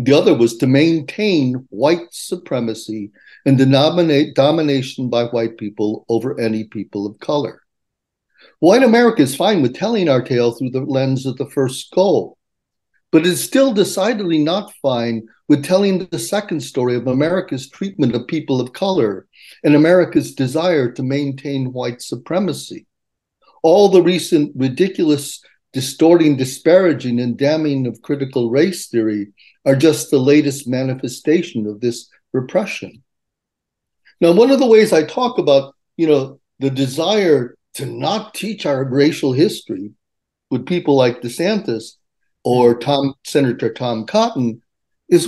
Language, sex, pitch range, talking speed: English, male, 125-175 Hz, 140 wpm